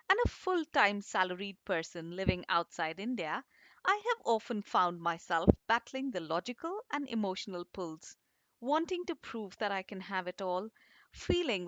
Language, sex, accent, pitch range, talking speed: English, female, Indian, 180-265 Hz, 150 wpm